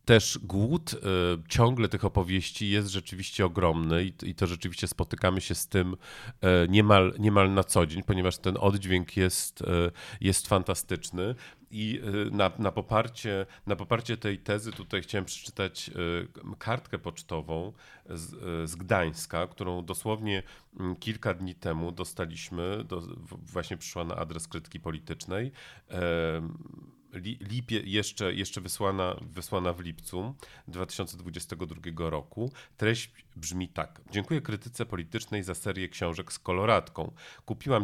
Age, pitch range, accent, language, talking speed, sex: 40-59, 90-105 Hz, native, Polish, 115 wpm, male